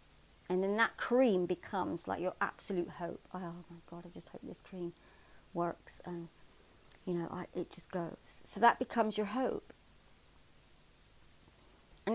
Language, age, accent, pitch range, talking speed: English, 30-49, British, 165-200 Hz, 155 wpm